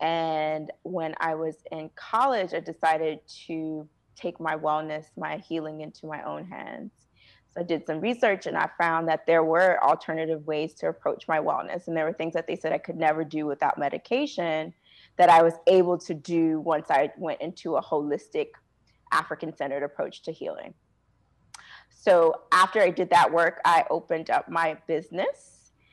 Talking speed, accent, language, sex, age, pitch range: 175 wpm, American, English, female, 30-49, 160-205 Hz